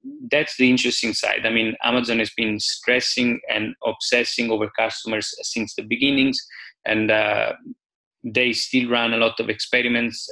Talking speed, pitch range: 150 wpm, 105-115 Hz